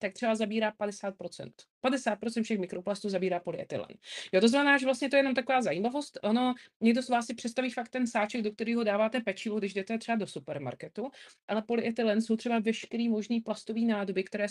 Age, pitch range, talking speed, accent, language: 30-49, 185-235 Hz, 190 wpm, native, Czech